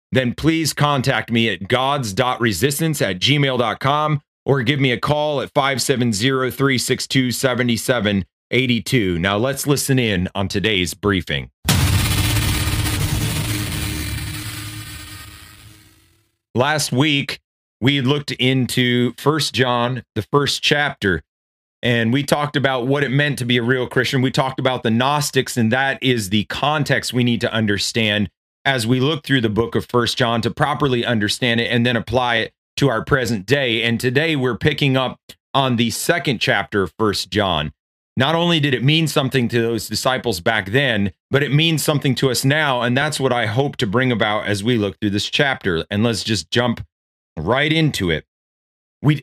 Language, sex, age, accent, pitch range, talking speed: English, male, 30-49, American, 105-135 Hz, 160 wpm